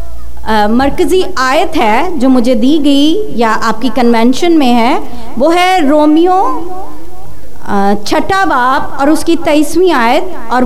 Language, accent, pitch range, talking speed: Hindi, native, 260-355 Hz, 125 wpm